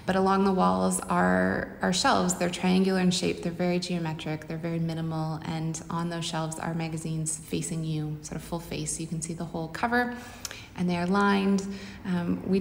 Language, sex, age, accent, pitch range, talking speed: English, female, 20-39, American, 150-185 Hz, 195 wpm